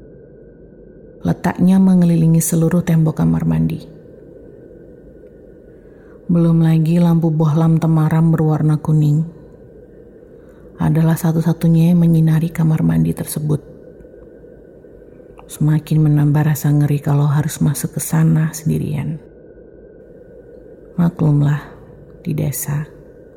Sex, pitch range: female, 150-170 Hz